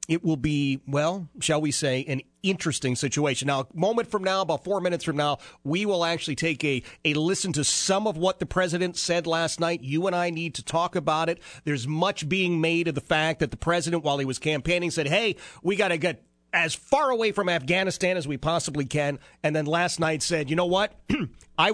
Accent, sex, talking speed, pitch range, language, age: American, male, 225 wpm, 135-180 Hz, English, 40-59